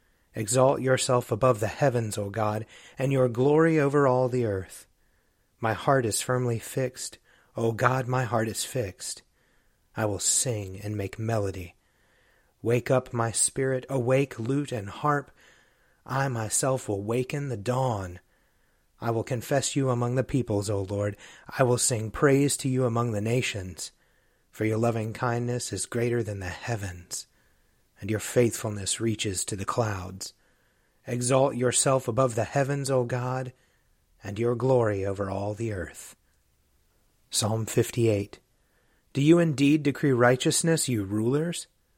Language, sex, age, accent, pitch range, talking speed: English, male, 30-49, American, 105-130 Hz, 145 wpm